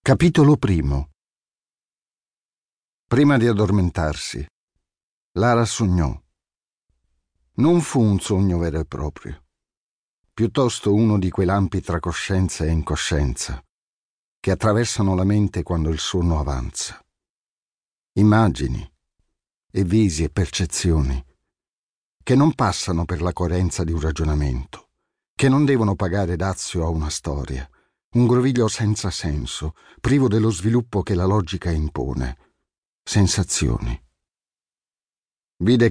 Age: 50-69